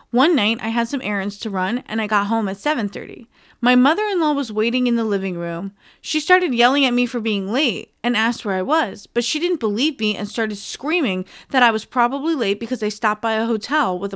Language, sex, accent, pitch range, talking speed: English, female, American, 205-265 Hz, 235 wpm